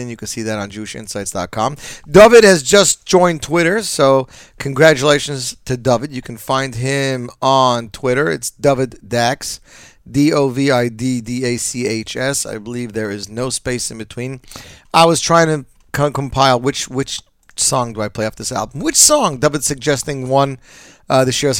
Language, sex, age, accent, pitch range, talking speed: English, male, 30-49, American, 115-140 Hz, 155 wpm